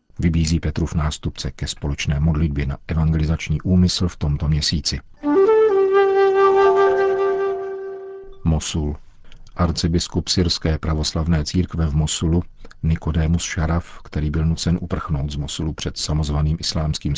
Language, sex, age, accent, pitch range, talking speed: Czech, male, 50-69, native, 80-95 Hz, 110 wpm